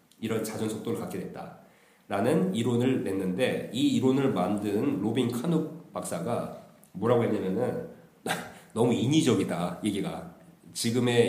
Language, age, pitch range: Korean, 40-59, 105-160 Hz